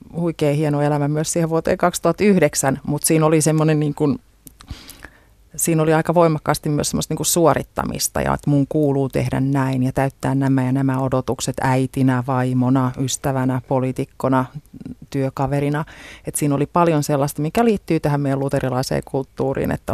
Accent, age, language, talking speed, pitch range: native, 30-49, Finnish, 145 wpm, 135-165 Hz